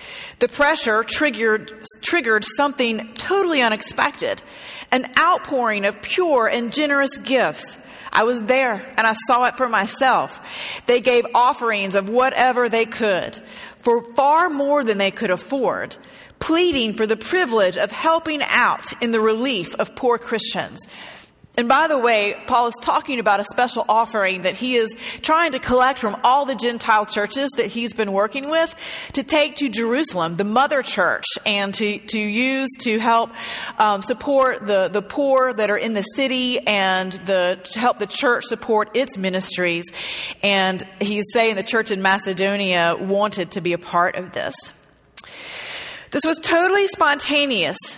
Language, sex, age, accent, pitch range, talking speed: English, female, 40-59, American, 205-275 Hz, 160 wpm